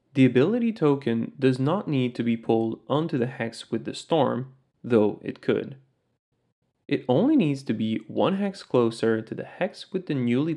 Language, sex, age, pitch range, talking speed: English, male, 20-39, 110-160 Hz, 180 wpm